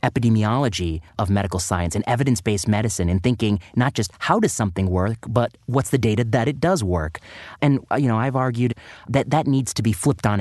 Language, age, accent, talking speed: English, 30-49, American, 200 wpm